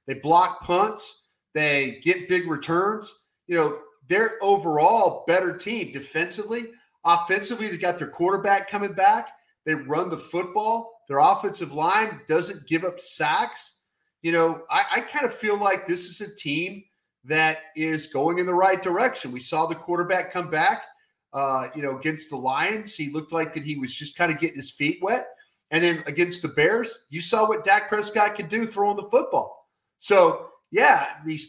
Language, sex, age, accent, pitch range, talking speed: English, male, 40-59, American, 160-215 Hz, 180 wpm